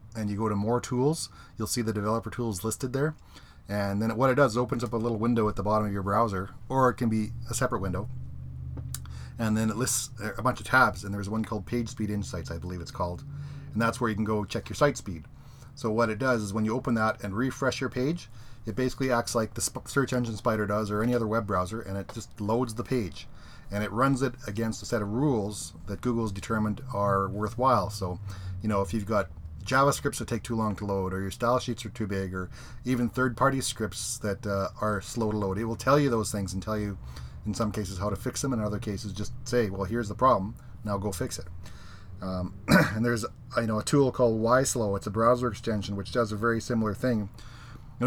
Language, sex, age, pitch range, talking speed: English, male, 30-49, 100-125 Hz, 240 wpm